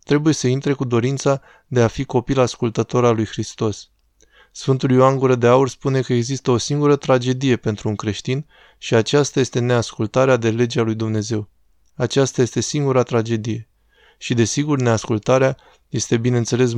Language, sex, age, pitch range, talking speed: Romanian, male, 20-39, 115-135 Hz, 155 wpm